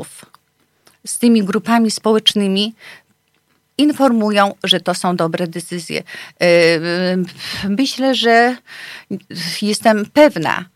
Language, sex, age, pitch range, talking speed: Polish, female, 40-59, 190-230 Hz, 80 wpm